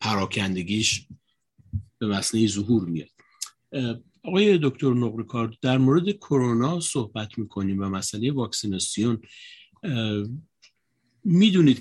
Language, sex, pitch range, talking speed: Persian, male, 95-130 Hz, 85 wpm